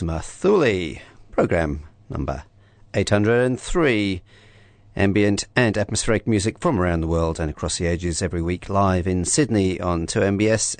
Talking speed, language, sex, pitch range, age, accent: 130 wpm, English, male, 90-110 Hz, 40-59, British